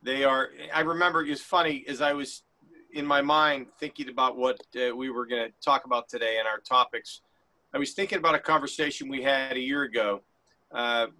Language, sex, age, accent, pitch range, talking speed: English, male, 40-59, American, 125-150 Hz, 210 wpm